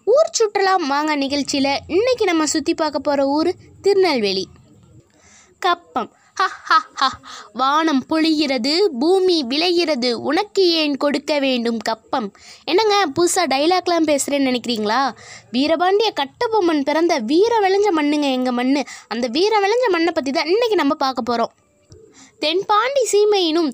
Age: 20-39